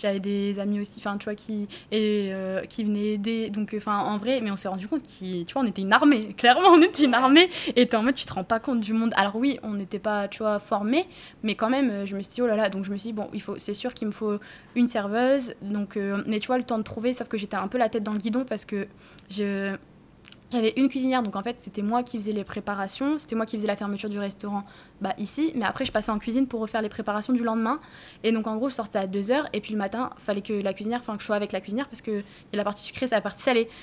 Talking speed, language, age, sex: 280 wpm, French, 20-39, female